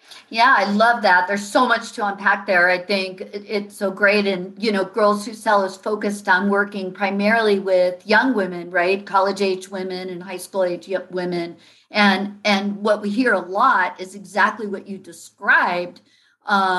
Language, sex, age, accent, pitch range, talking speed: English, female, 50-69, American, 185-210 Hz, 180 wpm